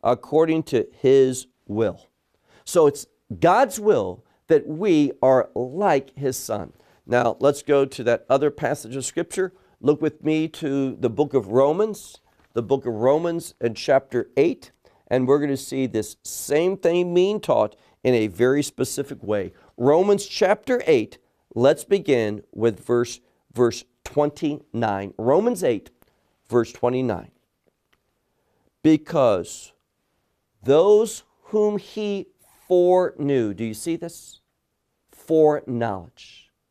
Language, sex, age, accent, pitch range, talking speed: English, male, 50-69, American, 125-185 Hz, 125 wpm